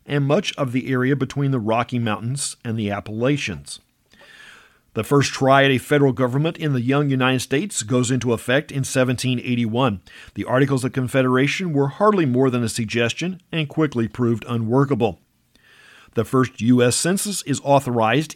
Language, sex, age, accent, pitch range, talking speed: English, male, 50-69, American, 120-150 Hz, 160 wpm